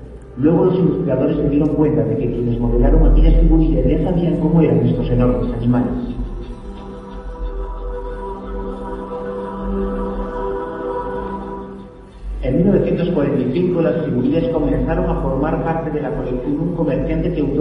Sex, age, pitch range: male, 50-69, 120-160 Hz